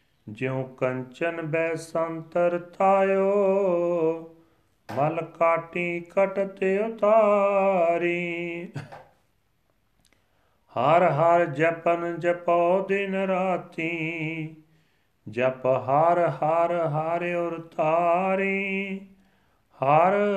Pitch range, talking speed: 160-190 Hz, 60 wpm